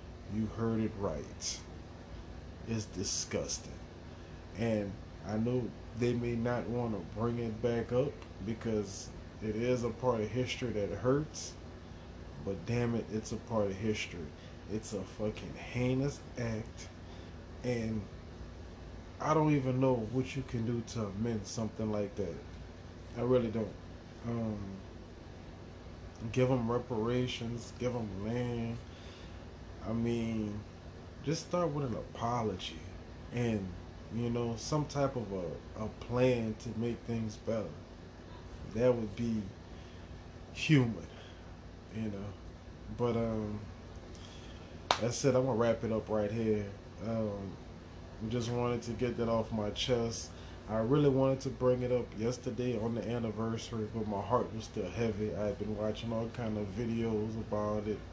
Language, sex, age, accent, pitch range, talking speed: English, male, 20-39, American, 90-115 Hz, 140 wpm